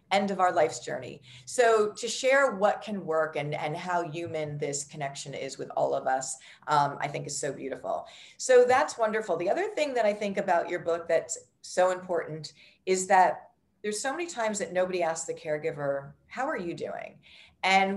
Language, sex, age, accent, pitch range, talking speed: English, female, 40-59, American, 160-220 Hz, 195 wpm